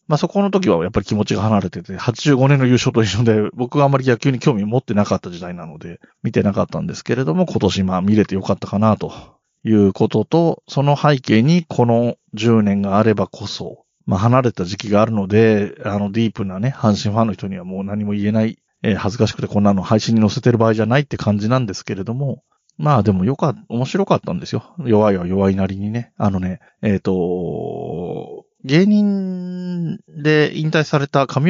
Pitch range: 105-145 Hz